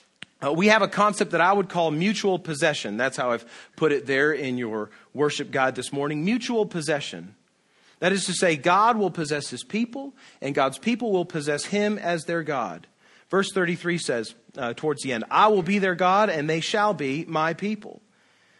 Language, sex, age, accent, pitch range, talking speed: English, male, 40-59, American, 150-200 Hz, 195 wpm